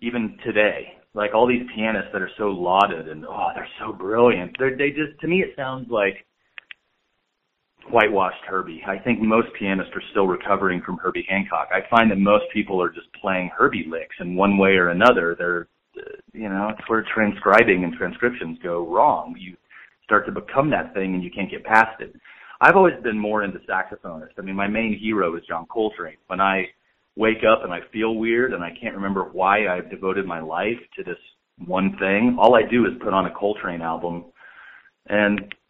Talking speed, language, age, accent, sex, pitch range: 195 wpm, English, 30-49, American, male, 95-115 Hz